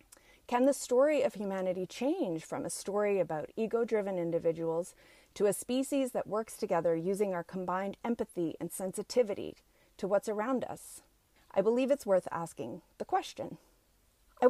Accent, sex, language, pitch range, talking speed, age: American, female, English, 175-245 Hz, 150 wpm, 30-49